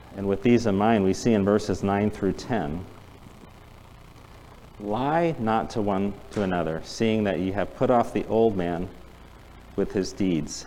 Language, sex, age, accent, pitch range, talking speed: English, male, 40-59, American, 95-110 Hz, 170 wpm